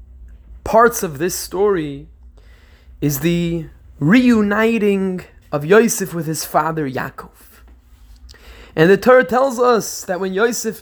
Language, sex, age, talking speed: English, male, 20-39, 115 wpm